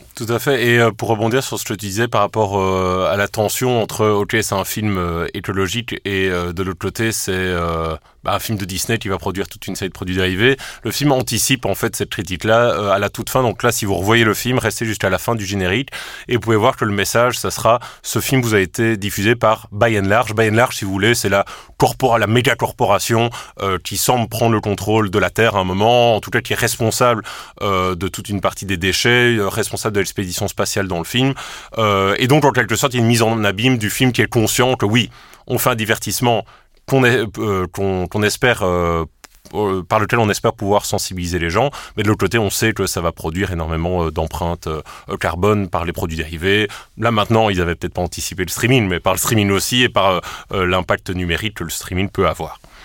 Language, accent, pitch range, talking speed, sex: French, French, 95-115 Hz, 230 wpm, male